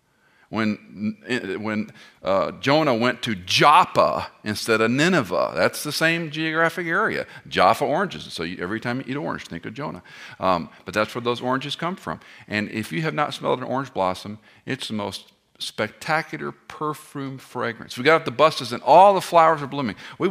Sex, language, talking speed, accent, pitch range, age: male, English, 185 wpm, American, 95-150 Hz, 50-69